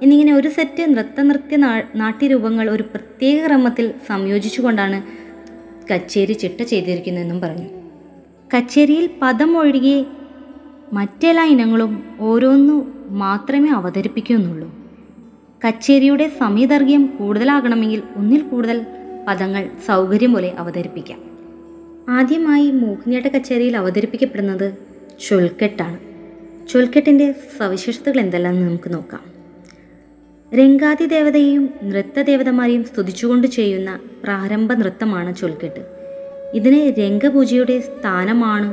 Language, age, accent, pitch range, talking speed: Malayalam, 20-39, native, 190-275 Hz, 75 wpm